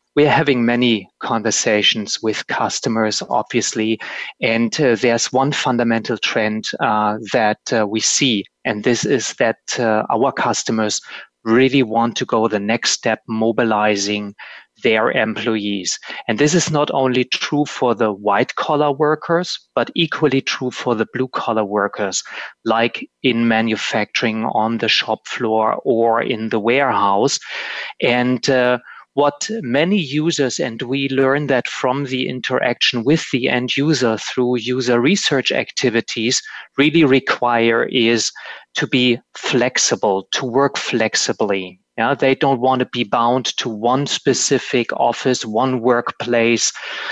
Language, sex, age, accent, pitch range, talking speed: English, male, 30-49, German, 115-135 Hz, 130 wpm